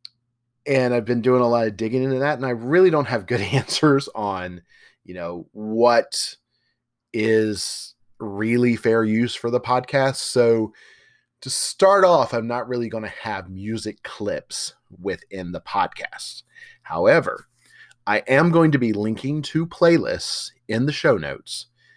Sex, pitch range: male, 100-130 Hz